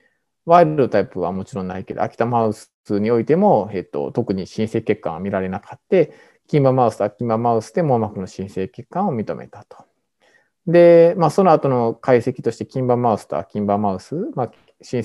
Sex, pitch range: male, 100-140 Hz